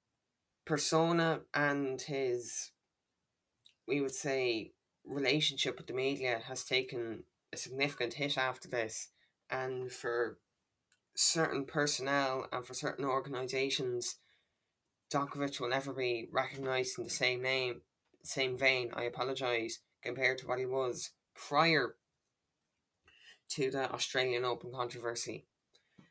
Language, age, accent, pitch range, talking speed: English, 10-29, Irish, 125-150 Hz, 110 wpm